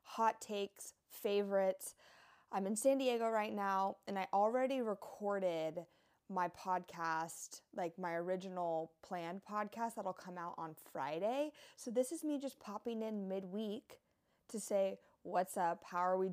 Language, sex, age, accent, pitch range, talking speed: English, female, 20-39, American, 180-230 Hz, 145 wpm